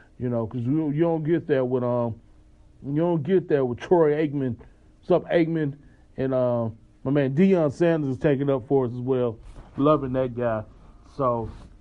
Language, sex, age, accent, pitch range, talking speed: English, male, 30-49, American, 140-190 Hz, 195 wpm